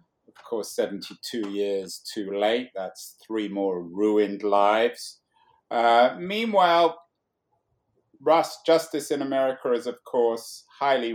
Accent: British